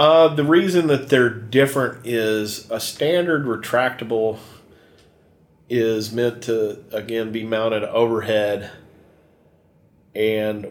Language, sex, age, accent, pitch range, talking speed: English, male, 40-59, American, 100-115 Hz, 100 wpm